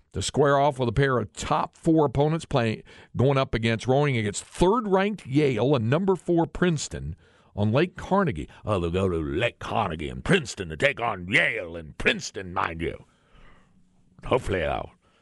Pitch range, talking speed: 90-130 Hz, 170 wpm